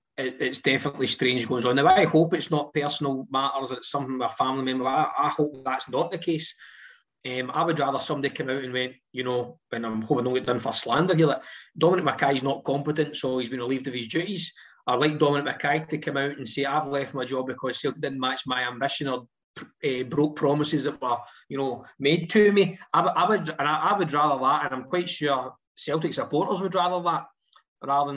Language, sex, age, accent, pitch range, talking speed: English, male, 20-39, British, 130-155 Hz, 225 wpm